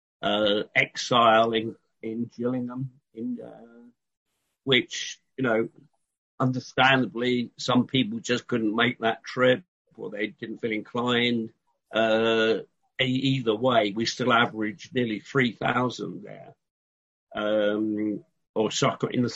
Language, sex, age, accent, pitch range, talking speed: English, male, 50-69, British, 110-130 Hz, 120 wpm